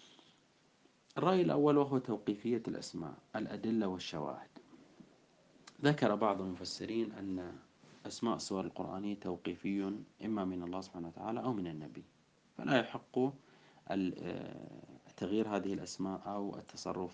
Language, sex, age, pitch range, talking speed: Arabic, male, 40-59, 90-115 Hz, 105 wpm